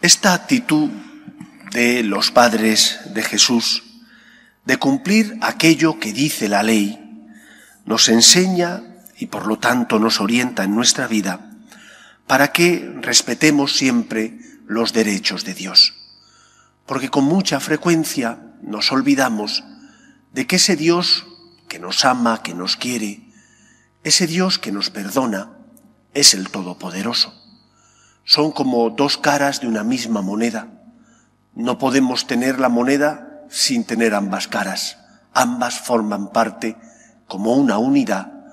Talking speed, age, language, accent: 125 wpm, 40-59, English, Spanish